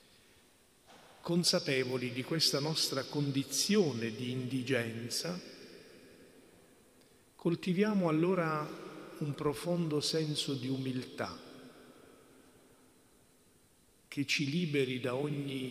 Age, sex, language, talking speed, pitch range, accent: 50-69, male, Italian, 75 wpm, 130-170 Hz, native